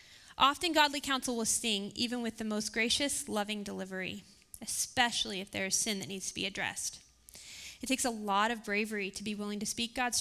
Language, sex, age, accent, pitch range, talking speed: English, female, 20-39, American, 205-260 Hz, 200 wpm